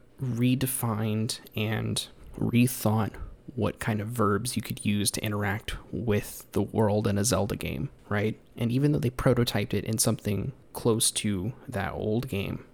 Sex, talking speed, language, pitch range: male, 155 wpm, English, 105-120 Hz